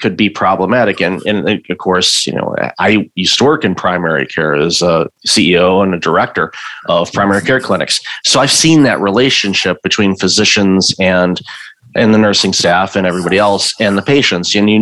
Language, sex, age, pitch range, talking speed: English, male, 30-49, 95-110 Hz, 185 wpm